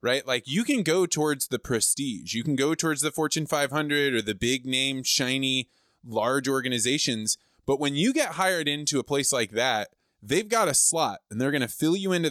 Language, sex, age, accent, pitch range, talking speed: English, male, 20-39, American, 125-155 Hz, 210 wpm